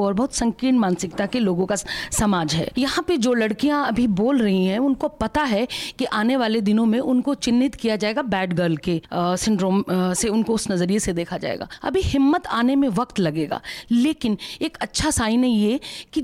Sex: female